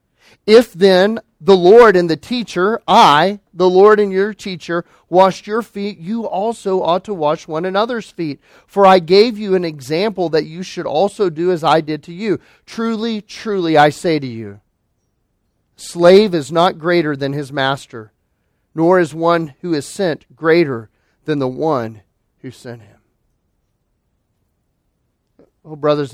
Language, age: English, 40-59